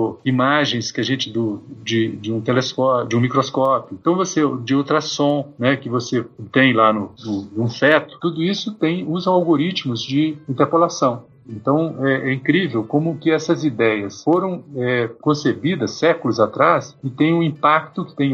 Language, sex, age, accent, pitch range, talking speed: Portuguese, male, 50-69, Brazilian, 130-165 Hz, 165 wpm